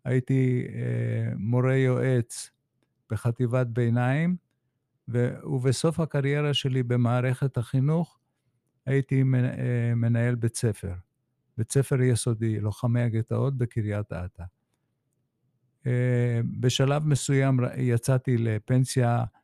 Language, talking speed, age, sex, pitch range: Hebrew, 80 wpm, 50-69, male, 120-135 Hz